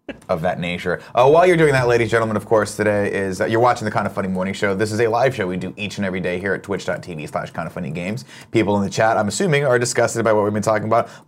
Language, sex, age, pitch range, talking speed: English, male, 30-49, 95-120 Hz, 310 wpm